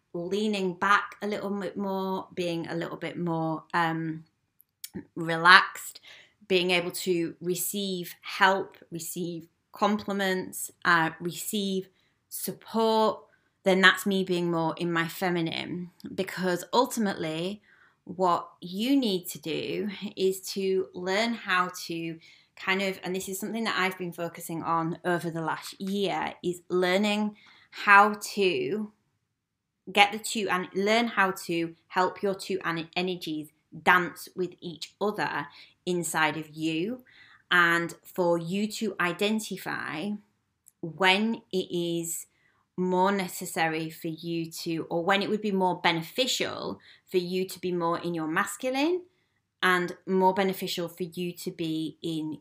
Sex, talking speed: female, 135 wpm